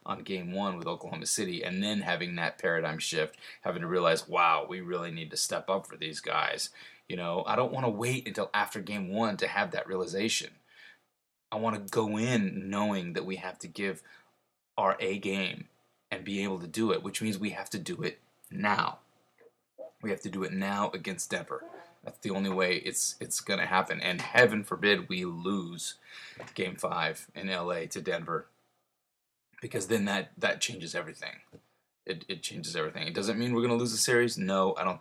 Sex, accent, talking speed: male, American, 200 wpm